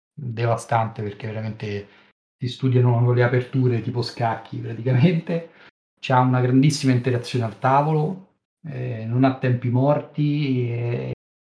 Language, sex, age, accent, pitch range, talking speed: Italian, male, 40-59, native, 120-140 Hz, 115 wpm